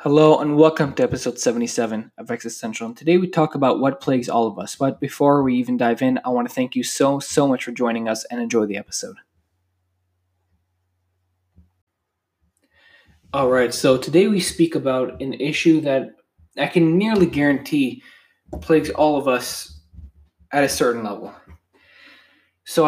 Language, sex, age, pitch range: English, male, 20-39, 115-155 Hz